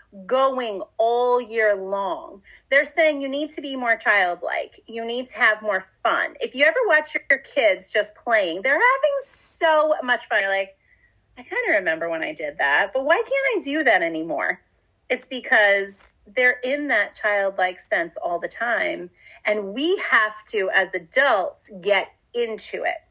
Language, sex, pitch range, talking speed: English, female, 210-310 Hz, 170 wpm